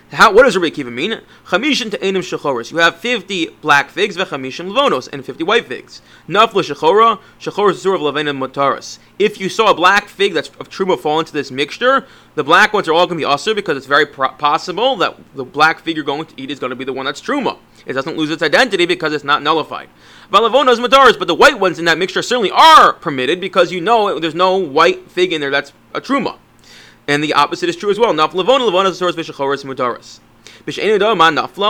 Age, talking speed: 30-49, 180 wpm